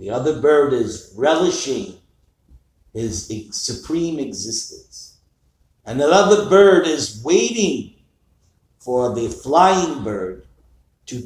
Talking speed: 100 wpm